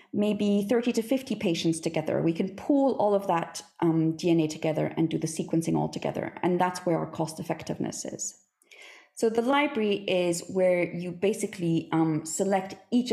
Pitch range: 170-220 Hz